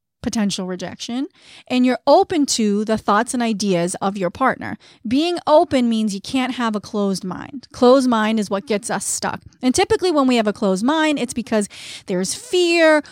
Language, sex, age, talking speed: English, female, 30-49, 190 wpm